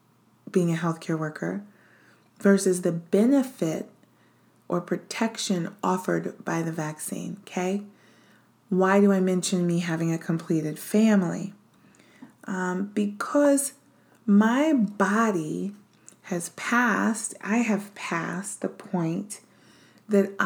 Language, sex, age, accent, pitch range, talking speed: English, female, 30-49, American, 175-215 Hz, 105 wpm